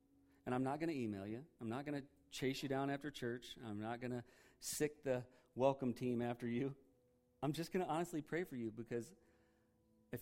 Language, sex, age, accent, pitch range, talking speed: English, male, 40-59, American, 105-130 Hz, 210 wpm